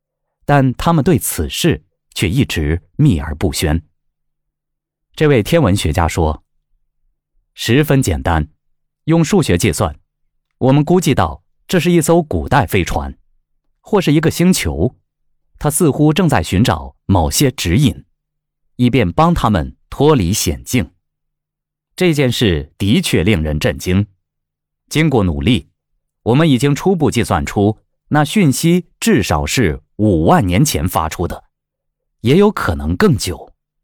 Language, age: Chinese, 30-49